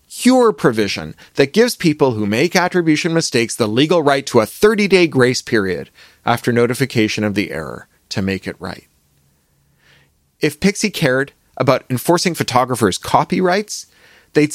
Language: English